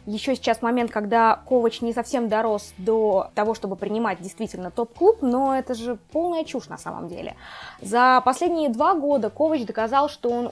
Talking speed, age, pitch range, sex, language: 170 wpm, 20-39, 215-265 Hz, female, Russian